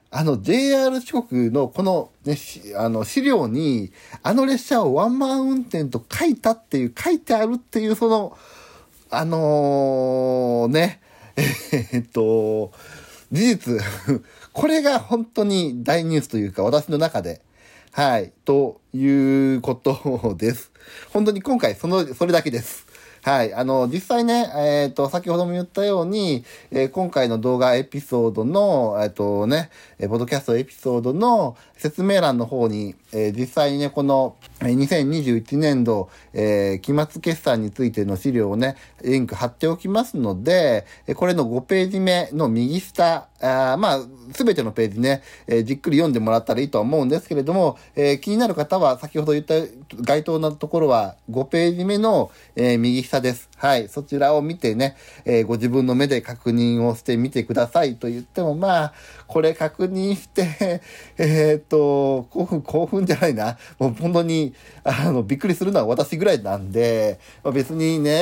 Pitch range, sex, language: 125-180 Hz, male, Japanese